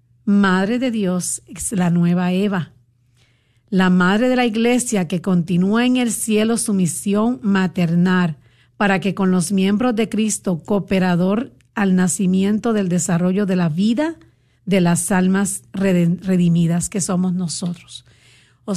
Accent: American